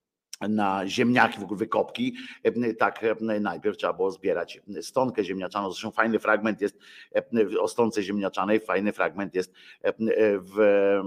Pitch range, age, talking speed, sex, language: 105-160 Hz, 50-69, 125 wpm, male, Polish